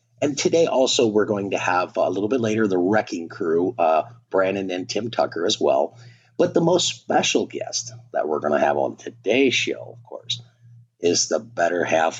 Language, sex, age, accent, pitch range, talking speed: English, male, 50-69, American, 90-125 Hz, 195 wpm